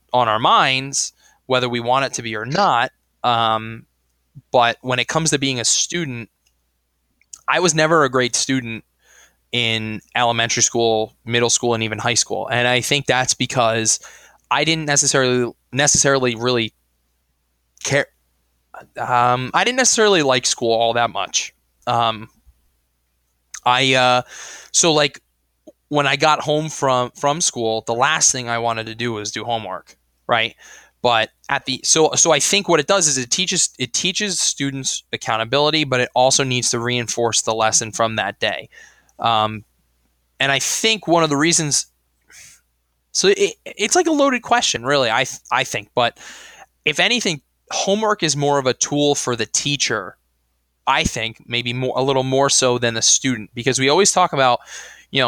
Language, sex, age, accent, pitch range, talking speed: English, male, 20-39, American, 110-145 Hz, 165 wpm